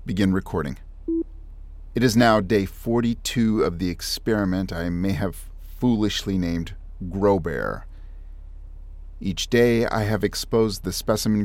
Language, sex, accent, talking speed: English, male, American, 120 wpm